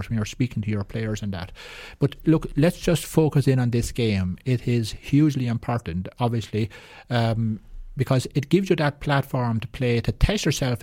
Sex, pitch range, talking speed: male, 110-130 Hz, 190 wpm